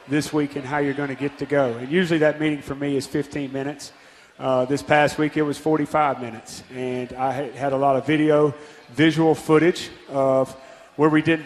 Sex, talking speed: male, 210 wpm